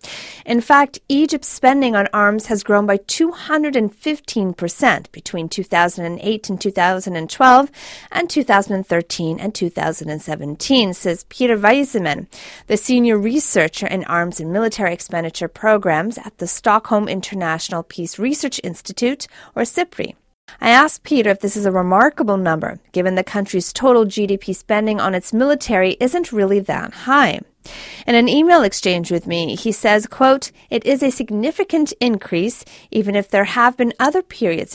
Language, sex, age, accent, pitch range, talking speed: English, female, 40-59, American, 180-255 Hz, 140 wpm